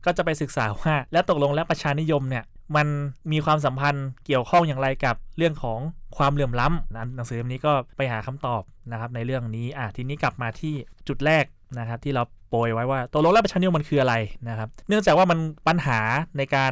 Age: 20-39